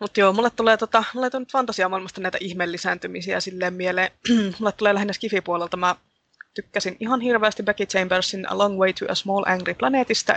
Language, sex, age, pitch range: Finnish, female, 20-39, 180-205 Hz